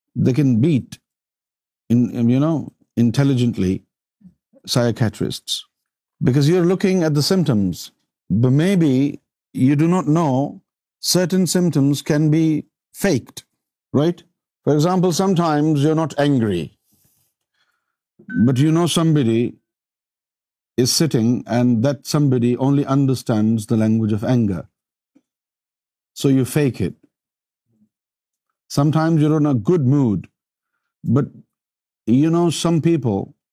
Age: 50-69